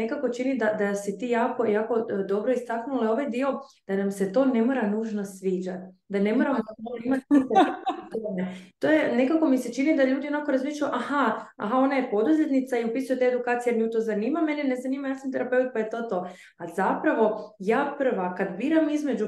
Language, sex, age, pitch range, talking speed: Croatian, female, 20-39, 210-260 Hz, 200 wpm